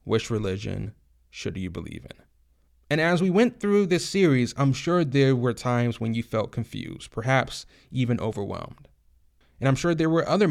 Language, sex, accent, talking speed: English, male, American, 175 wpm